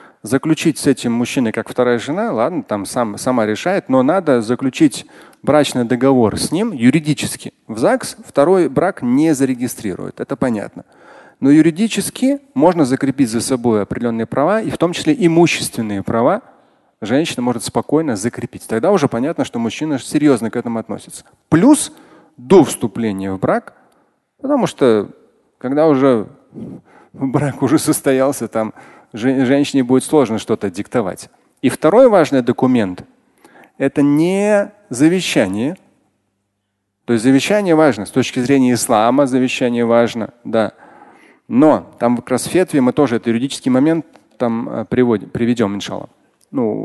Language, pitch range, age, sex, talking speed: Russian, 115-155 Hz, 30-49, male, 135 wpm